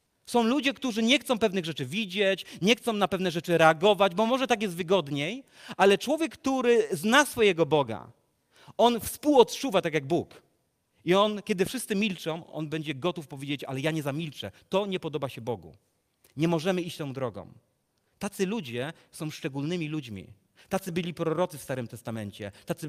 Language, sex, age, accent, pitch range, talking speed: Polish, male, 30-49, native, 145-215 Hz, 170 wpm